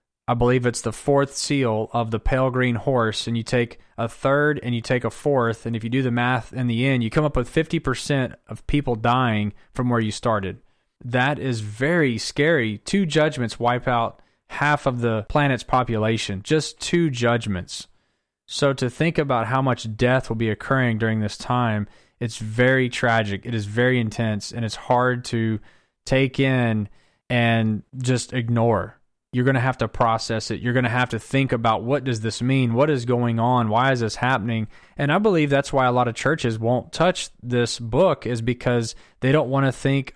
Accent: American